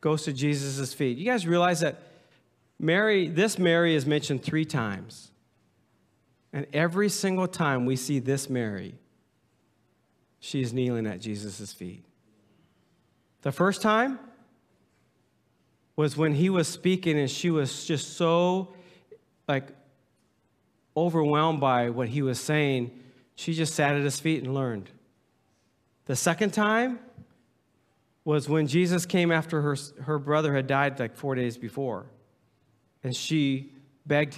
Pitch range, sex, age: 125-165 Hz, male, 40-59